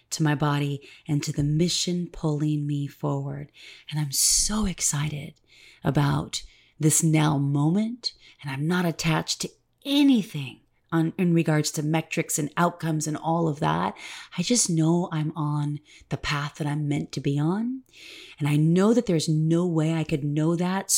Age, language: 30-49, English